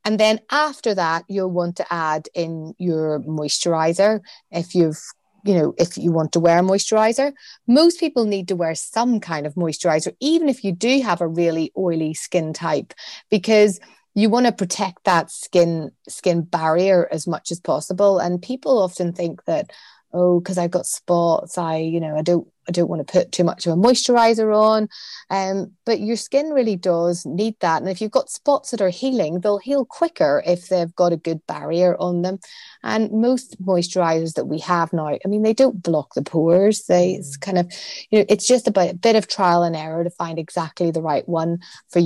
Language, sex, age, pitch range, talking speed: English, female, 30-49, 170-200 Hz, 205 wpm